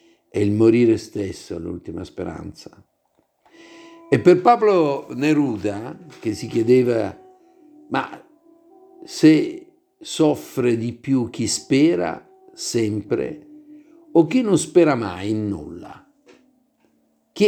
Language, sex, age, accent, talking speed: Italian, male, 60-79, native, 105 wpm